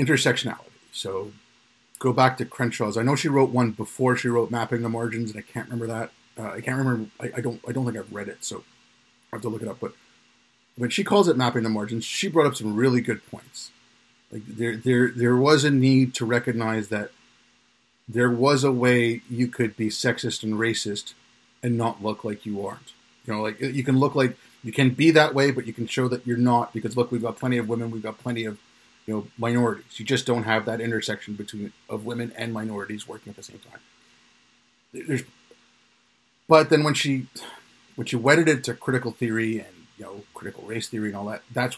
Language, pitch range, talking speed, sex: English, 115-130 Hz, 220 wpm, male